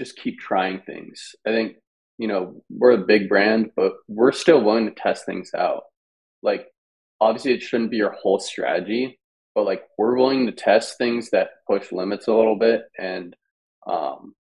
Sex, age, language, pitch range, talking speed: male, 20-39, English, 105-125 Hz, 175 wpm